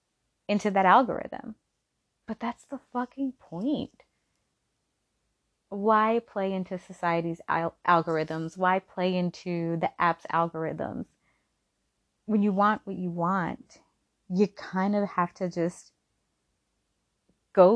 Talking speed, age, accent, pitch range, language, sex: 110 wpm, 30-49, American, 175-215 Hz, English, female